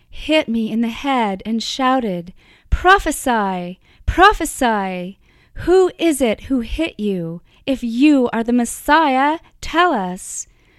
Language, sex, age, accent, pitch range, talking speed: English, female, 30-49, American, 220-265 Hz, 120 wpm